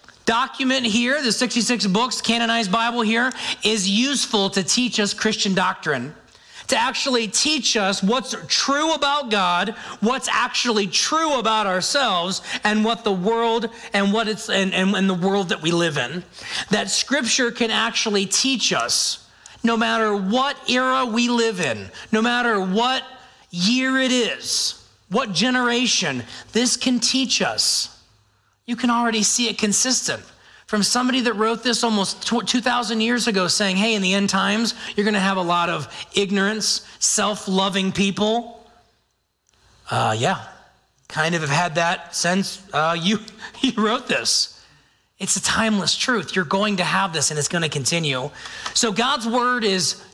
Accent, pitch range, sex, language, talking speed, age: American, 195-240 Hz, male, English, 155 wpm, 40-59